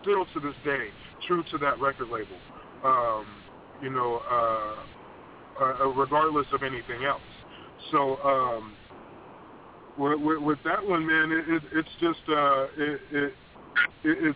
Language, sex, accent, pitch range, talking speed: English, male, American, 140-180 Hz, 130 wpm